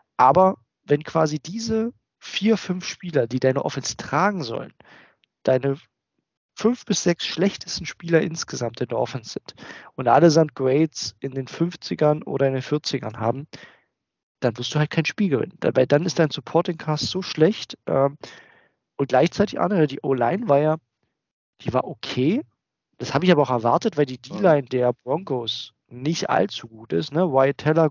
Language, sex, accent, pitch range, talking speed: German, male, German, 135-170 Hz, 170 wpm